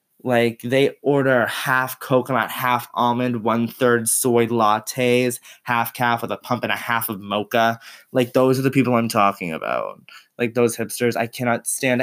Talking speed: 175 wpm